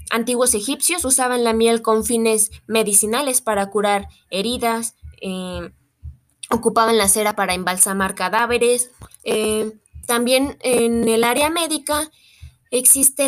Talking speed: 115 wpm